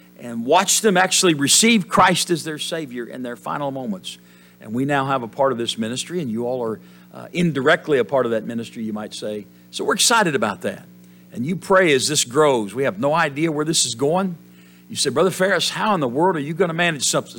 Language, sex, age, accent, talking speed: English, male, 50-69, American, 235 wpm